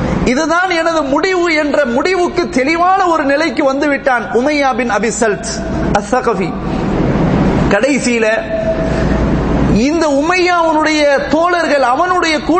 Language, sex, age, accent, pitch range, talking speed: English, male, 30-49, Indian, 265-335 Hz, 100 wpm